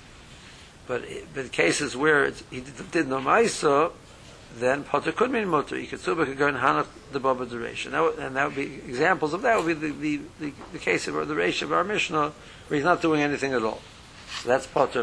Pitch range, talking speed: 125-155 Hz, 205 wpm